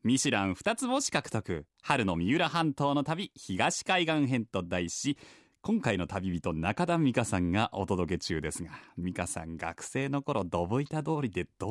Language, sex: Japanese, male